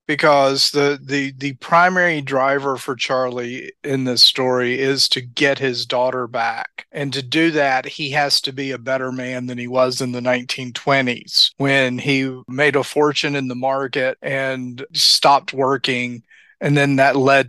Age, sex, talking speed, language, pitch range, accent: 40-59, male, 165 wpm, English, 125-145 Hz, American